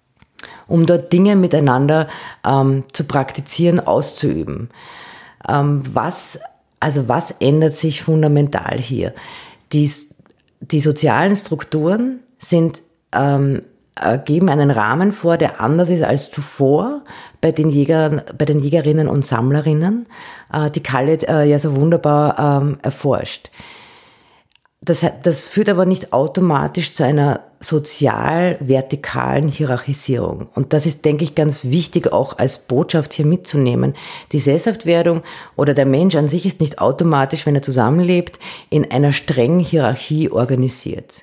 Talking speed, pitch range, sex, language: 125 wpm, 140-170 Hz, female, German